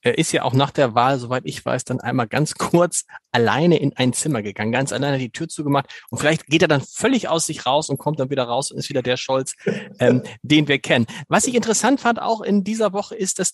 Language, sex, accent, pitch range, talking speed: German, male, German, 135-190 Hz, 255 wpm